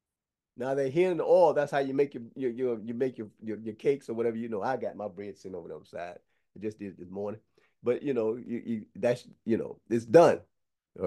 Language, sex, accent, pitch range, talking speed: English, male, American, 115-170 Hz, 275 wpm